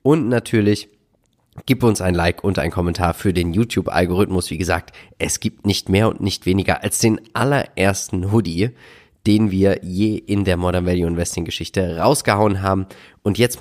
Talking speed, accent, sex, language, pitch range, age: 170 wpm, German, male, German, 95-115 Hz, 30-49